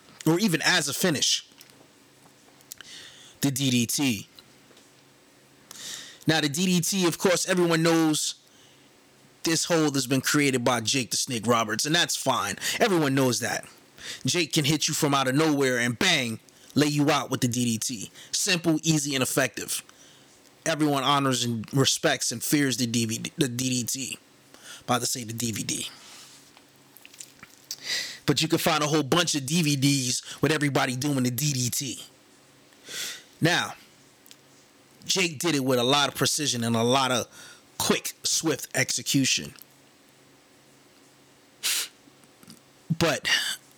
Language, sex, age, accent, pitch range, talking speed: English, male, 20-39, American, 125-155 Hz, 130 wpm